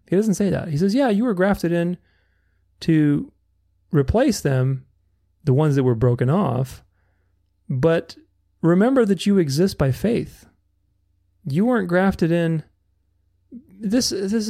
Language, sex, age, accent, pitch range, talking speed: English, male, 30-49, American, 110-170 Hz, 135 wpm